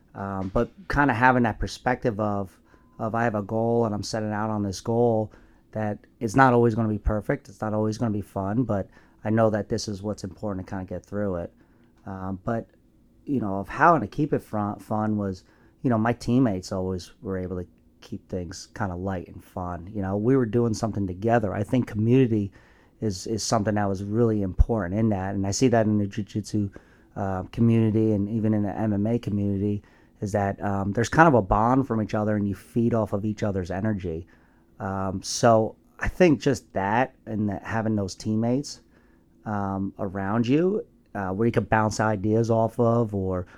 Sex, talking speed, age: male, 210 wpm, 30-49